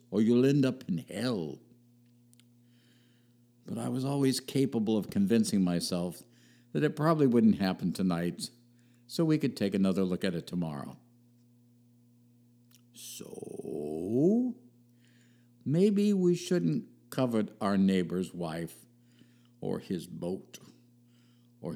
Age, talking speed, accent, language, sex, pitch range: 60-79, 115 wpm, American, English, male, 110-120 Hz